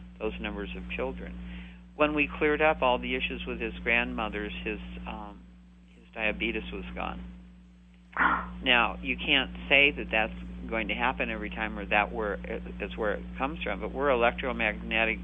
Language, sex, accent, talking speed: English, male, American, 165 wpm